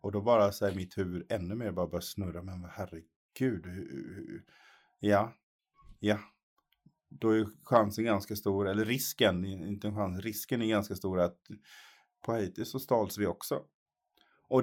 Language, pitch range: Swedish, 90-105 Hz